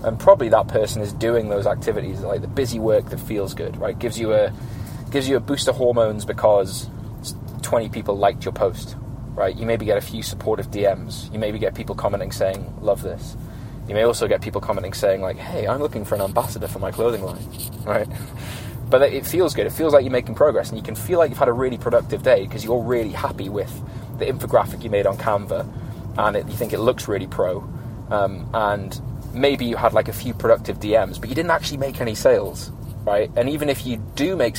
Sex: male